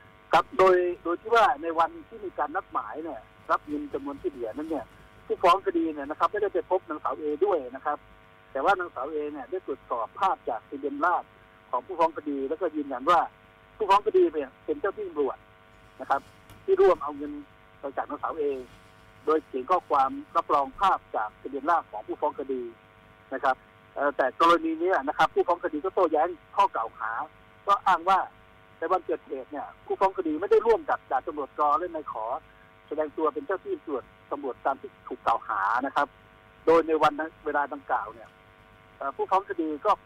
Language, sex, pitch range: Thai, male, 135-195 Hz